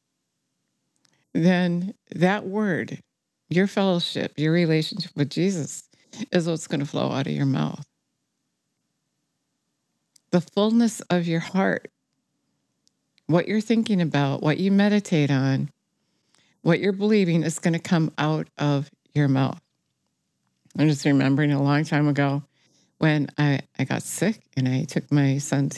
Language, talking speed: English, 135 wpm